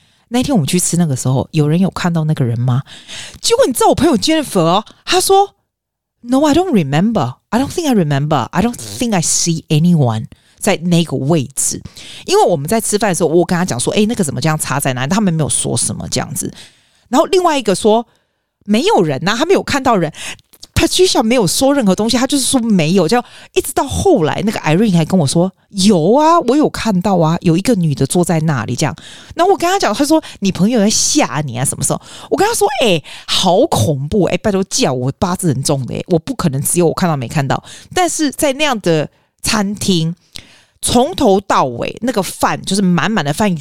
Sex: female